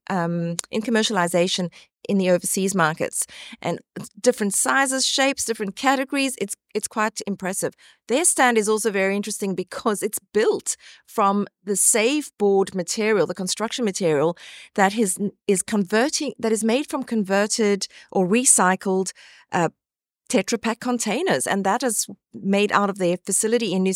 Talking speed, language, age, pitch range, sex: 150 wpm, English, 40-59, 190-230 Hz, female